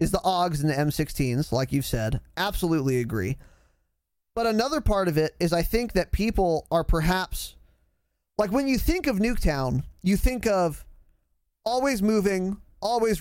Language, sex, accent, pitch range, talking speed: English, male, American, 130-190 Hz, 160 wpm